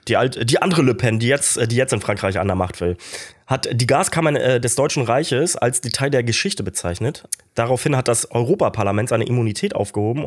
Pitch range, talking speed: 100-125 Hz, 205 wpm